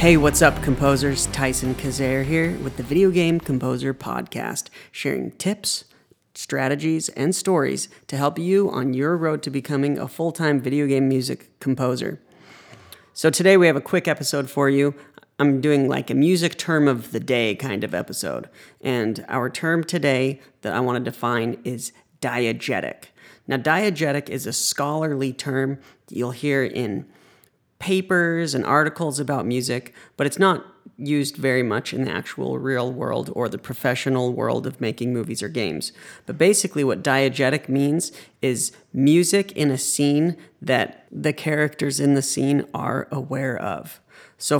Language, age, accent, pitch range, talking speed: English, 40-59, American, 130-150 Hz, 160 wpm